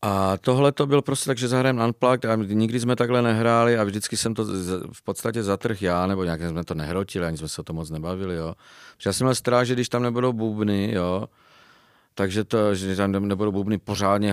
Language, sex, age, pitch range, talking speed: Czech, male, 40-59, 90-115 Hz, 220 wpm